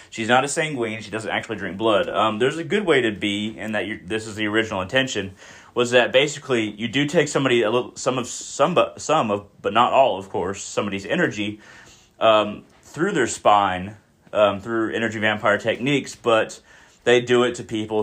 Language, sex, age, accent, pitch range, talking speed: English, male, 30-49, American, 105-125 Hz, 205 wpm